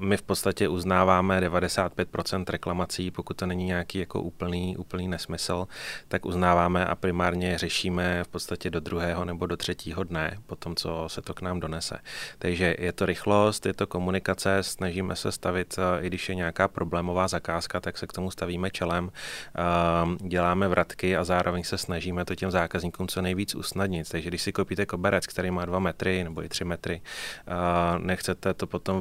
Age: 30-49